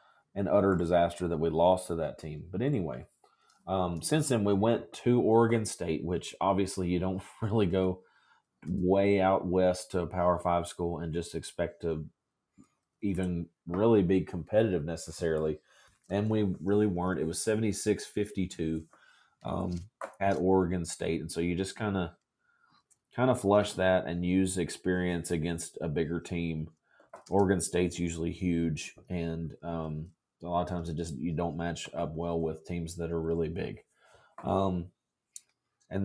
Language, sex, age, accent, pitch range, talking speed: English, male, 30-49, American, 85-100 Hz, 160 wpm